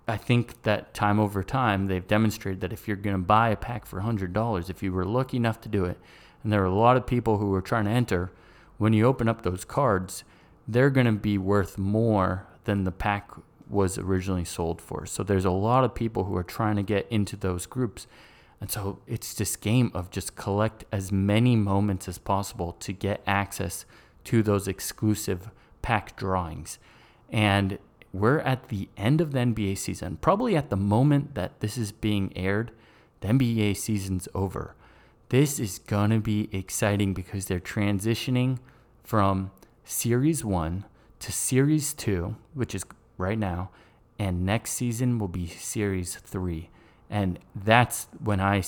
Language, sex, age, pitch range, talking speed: English, male, 30-49, 95-115 Hz, 180 wpm